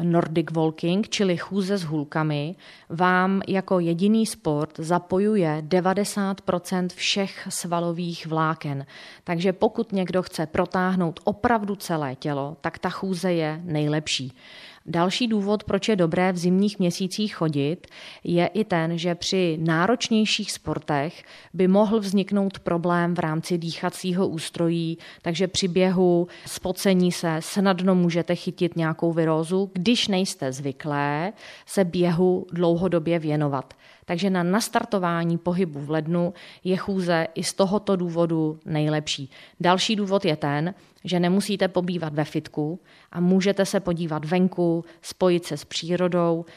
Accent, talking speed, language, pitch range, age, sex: native, 130 wpm, Czech, 160-190 Hz, 30-49, female